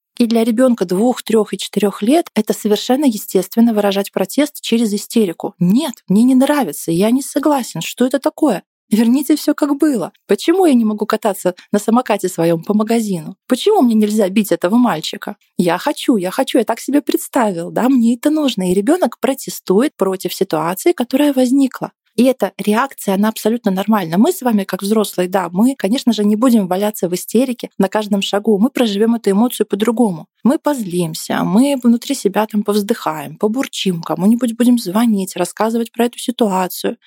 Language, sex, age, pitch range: Russian, female, 30-49, 195-245 Hz